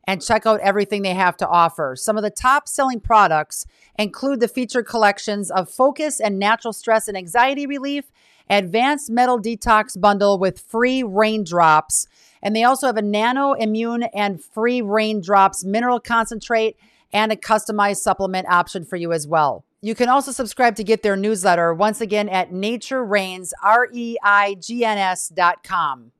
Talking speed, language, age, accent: 150 wpm, English, 40-59, American